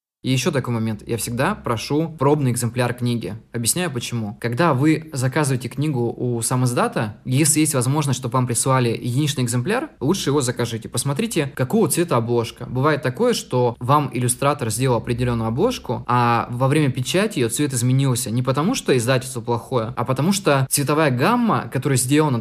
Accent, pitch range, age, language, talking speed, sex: native, 120-140 Hz, 20-39, Russian, 160 wpm, male